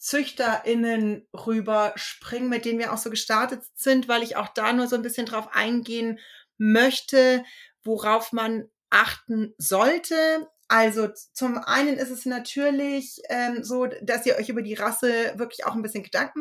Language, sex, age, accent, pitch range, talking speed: German, female, 30-49, German, 220-260 Hz, 160 wpm